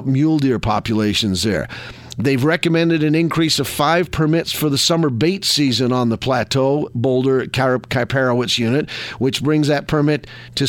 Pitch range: 125-155 Hz